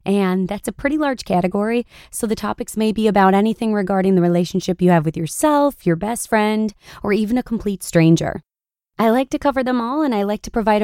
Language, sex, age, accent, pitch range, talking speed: English, female, 20-39, American, 180-235 Hz, 215 wpm